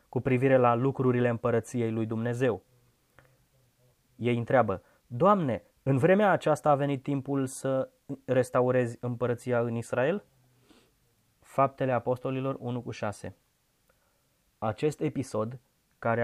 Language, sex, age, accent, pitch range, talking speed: Romanian, male, 20-39, native, 115-135 Hz, 105 wpm